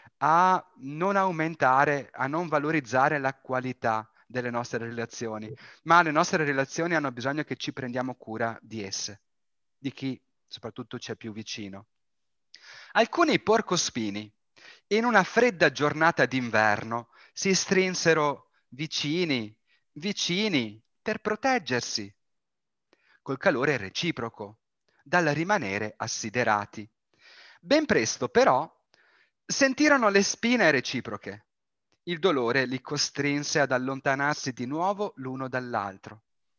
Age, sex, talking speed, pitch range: 30-49, male, 110 wpm, 120-190 Hz